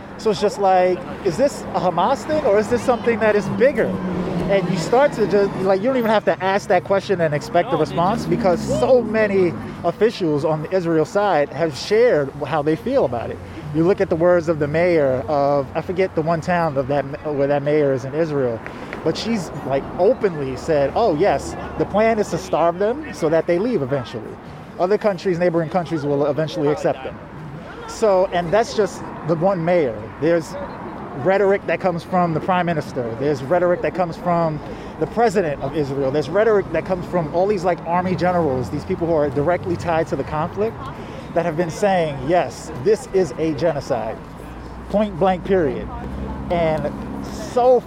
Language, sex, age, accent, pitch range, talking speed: English, male, 20-39, American, 155-195 Hz, 195 wpm